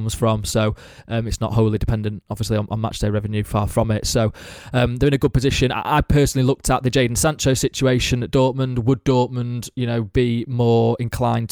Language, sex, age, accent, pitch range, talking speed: English, male, 20-39, British, 110-120 Hz, 215 wpm